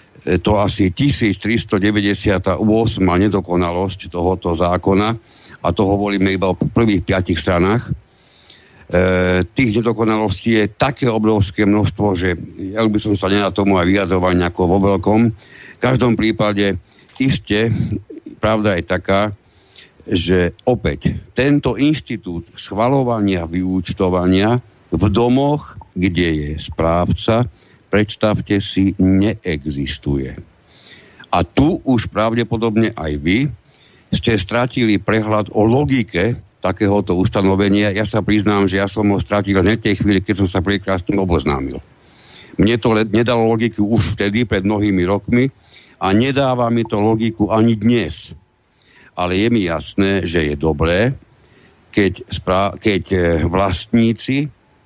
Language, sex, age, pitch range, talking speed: Slovak, male, 60-79, 95-115 Hz, 120 wpm